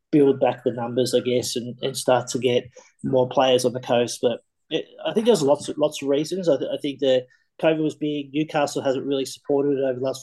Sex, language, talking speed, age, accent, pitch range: male, English, 245 wpm, 30-49, Australian, 125-140 Hz